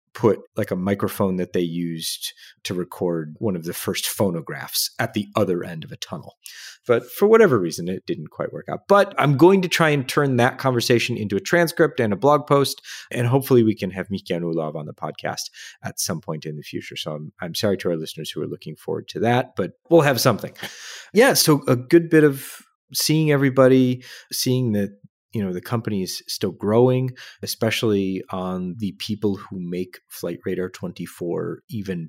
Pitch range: 95-135 Hz